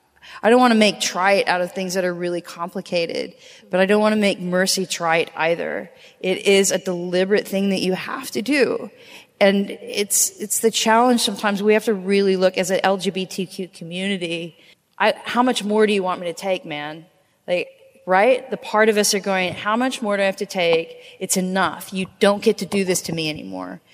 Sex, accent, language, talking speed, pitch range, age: female, American, English, 215 wpm, 170-205 Hz, 30-49